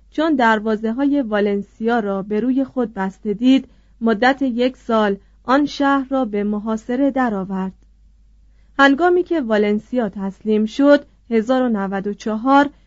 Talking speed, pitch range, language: 115 wpm, 210-265 Hz, Persian